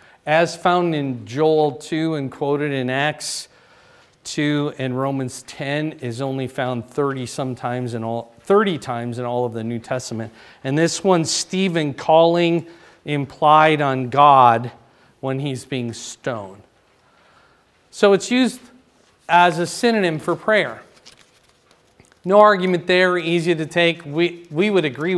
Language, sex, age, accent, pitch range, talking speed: English, male, 40-59, American, 135-185 Hz, 140 wpm